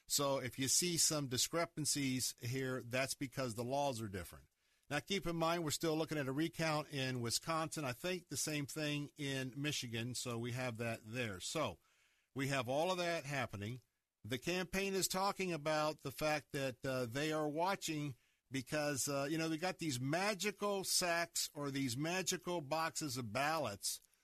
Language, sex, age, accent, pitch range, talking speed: English, male, 50-69, American, 125-155 Hz, 175 wpm